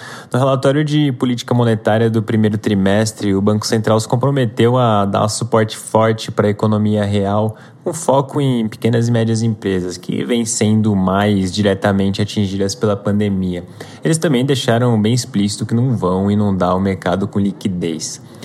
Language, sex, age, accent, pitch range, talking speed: Portuguese, male, 20-39, Brazilian, 100-120 Hz, 160 wpm